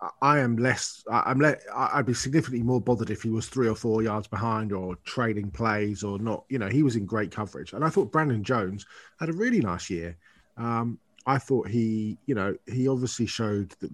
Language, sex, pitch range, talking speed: English, male, 105-130 Hz, 220 wpm